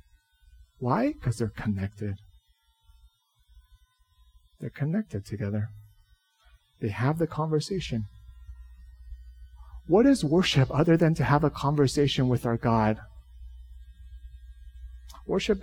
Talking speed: 90 wpm